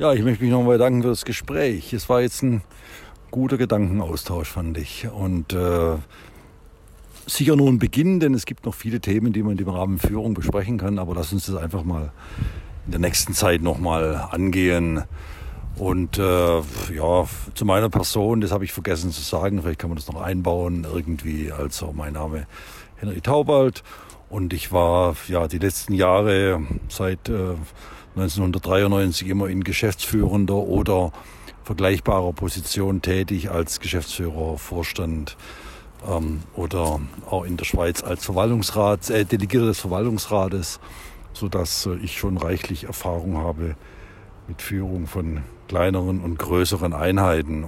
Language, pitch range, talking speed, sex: German, 85-100 Hz, 150 wpm, male